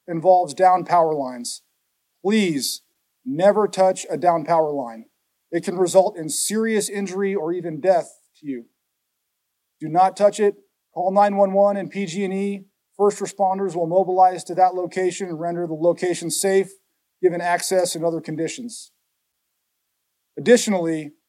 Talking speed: 135 wpm